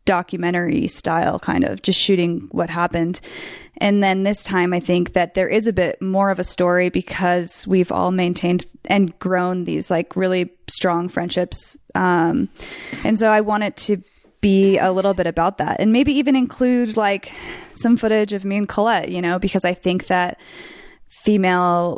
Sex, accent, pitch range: female, American, 180-215 Hz